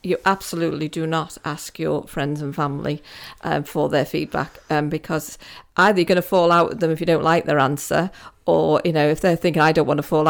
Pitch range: 155-185 Hz